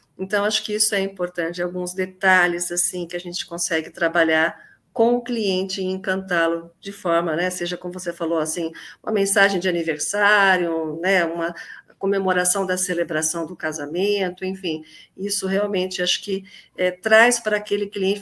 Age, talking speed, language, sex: 50-69, 160 wpm, Portuguese, female